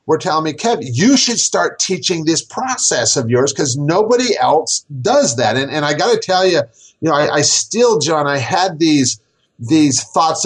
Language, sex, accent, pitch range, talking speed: English, male, American, 140-190 Hz, 200 wpm